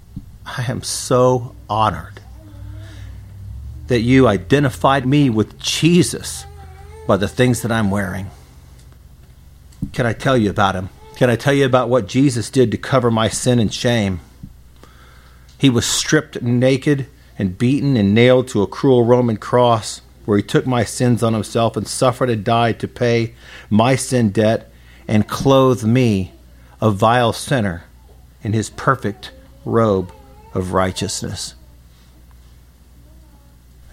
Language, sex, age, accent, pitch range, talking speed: English, male, 50-69, American, 85-125 Hz, 135 wpm